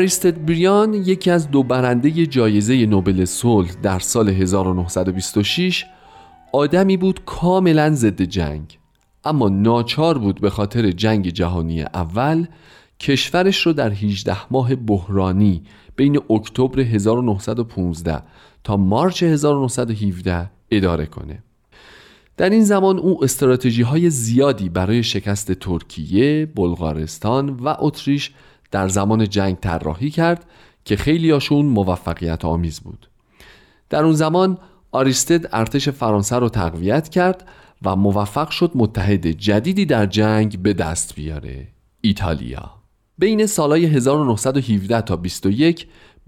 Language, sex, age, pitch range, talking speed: Persian, male, 40-59, 95-150 Hz, 110 wpm